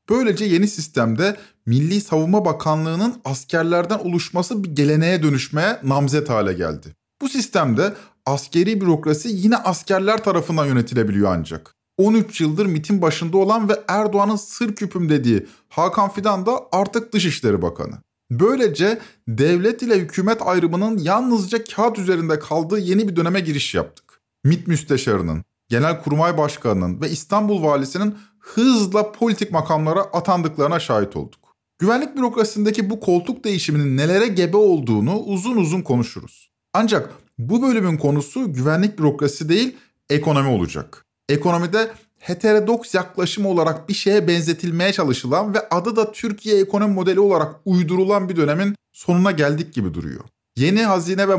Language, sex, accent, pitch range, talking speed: Turkish, male, native, 145-210 Hz, 130 wpm